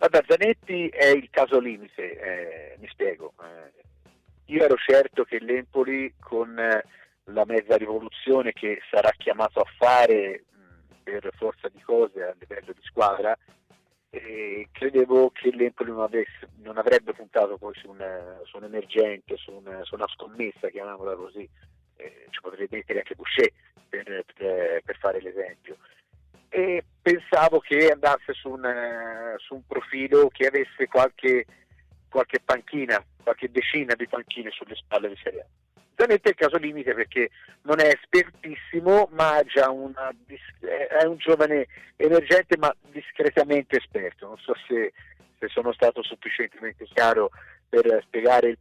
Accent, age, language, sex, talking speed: native, 50-69, Italian, male, 145 wpm